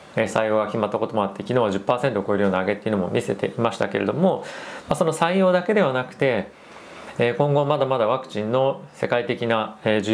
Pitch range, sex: 105-145 Hz, male